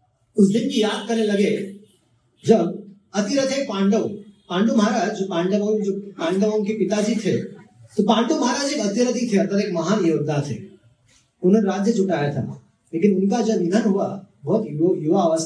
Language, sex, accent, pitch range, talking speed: Hindi, male, native, 180-235 Hz, 65 wpm